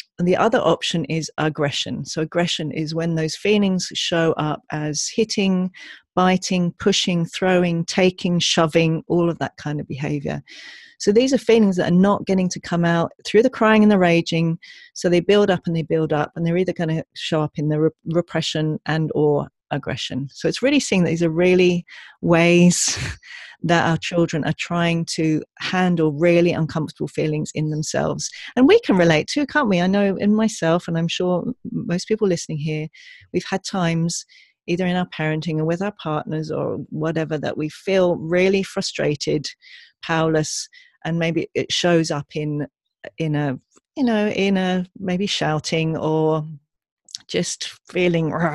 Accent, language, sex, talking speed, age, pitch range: British, English, female, 180 wpm, 40-59, 155-190 Hz